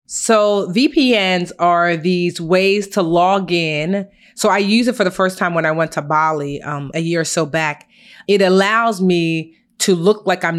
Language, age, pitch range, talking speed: English, 30-49, 165-200 Hz, 195 wpm